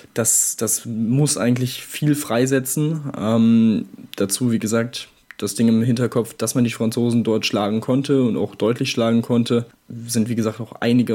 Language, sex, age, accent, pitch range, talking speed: German, male, 10-29, German, 115-125 Hz, 165 wpm